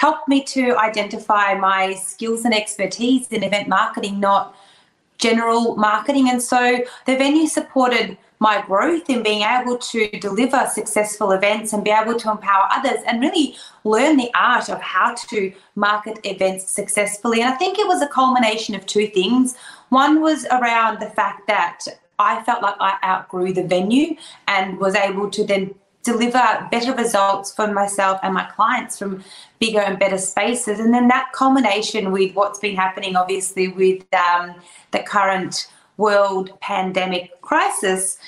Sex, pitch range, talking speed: female, 195-245 Hz, 160 wpm